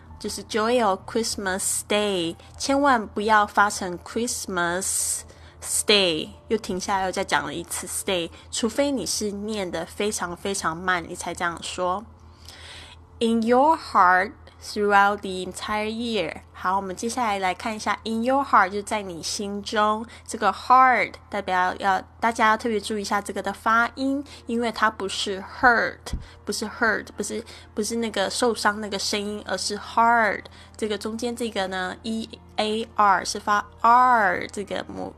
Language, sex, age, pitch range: Chinese, female, 10-29, 185-230 Hz